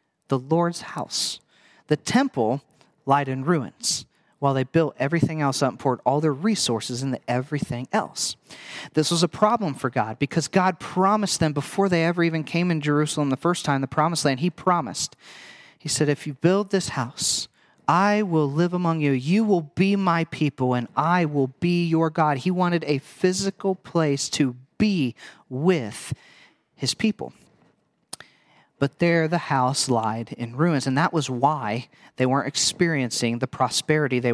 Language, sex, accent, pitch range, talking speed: English, male, American, 140-180 Hz, 170 wpm